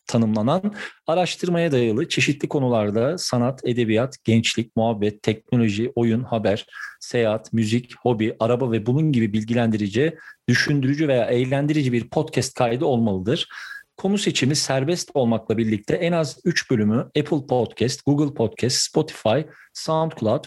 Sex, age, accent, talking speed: male, 40-59, native, 125 wpm